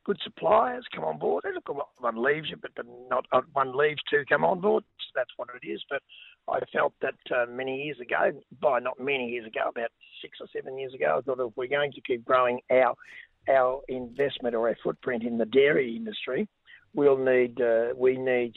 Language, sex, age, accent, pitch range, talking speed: English, male, 50-69, Australian, 120-145 Hz, 205 wpm